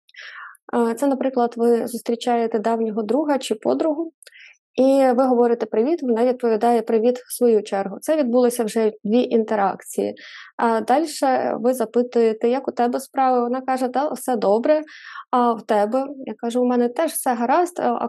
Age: 20-39